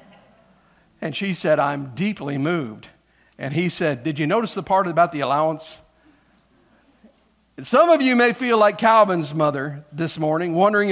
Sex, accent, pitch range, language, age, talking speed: male, American, 170-225 Hz, English, 50-69, 155 wpm